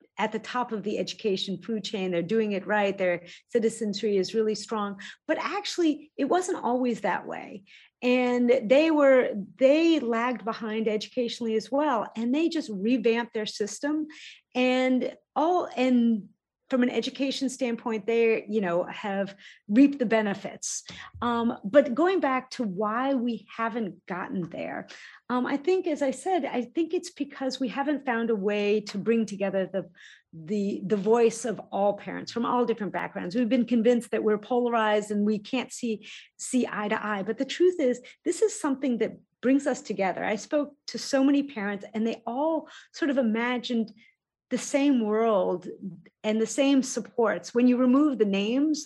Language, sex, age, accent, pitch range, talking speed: English, female, 40-59, American, 210-265 Hz, 175 wpm